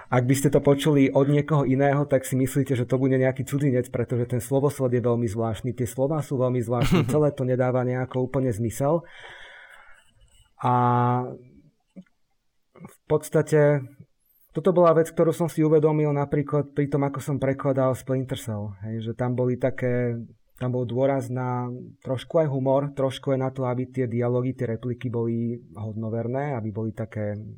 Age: 30-49